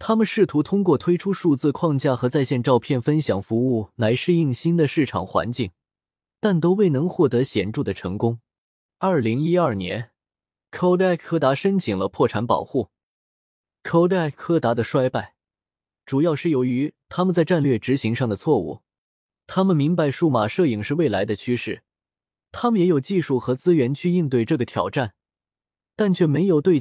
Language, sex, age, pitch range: Chinese, male, 20-39, 115-170 Hz